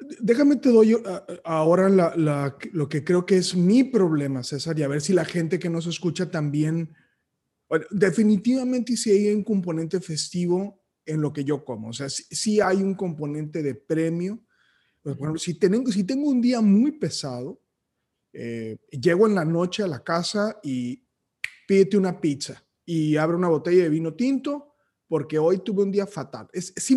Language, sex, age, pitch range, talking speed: Spanish, male, 30-49, 155-210 Hz, 180 wpm